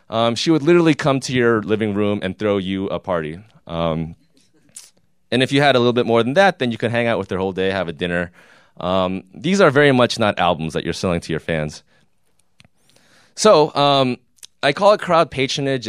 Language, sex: English, male